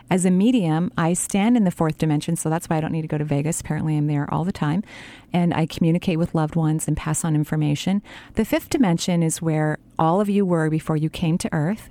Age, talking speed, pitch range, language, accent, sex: 40-59, 245 wpm, 155-185 Hz, English, American, female